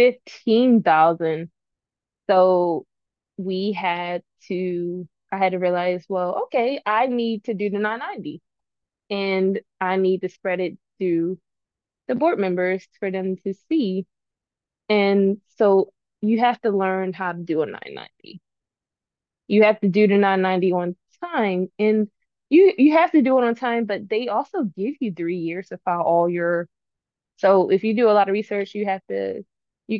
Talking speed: 165 wpm